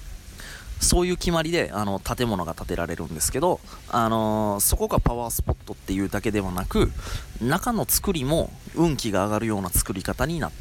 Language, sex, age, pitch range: Japanese, male, 20-39, 90-130 Hz